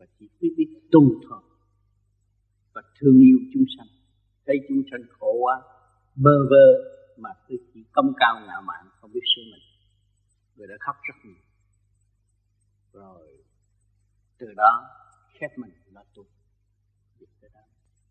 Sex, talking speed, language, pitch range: male, 135 wpm, Vietnamese, 100-155 Hz